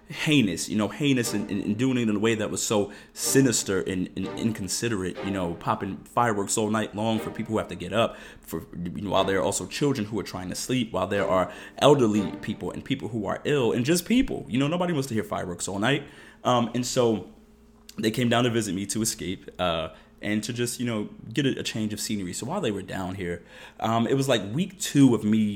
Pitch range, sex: 100-125 Hz, male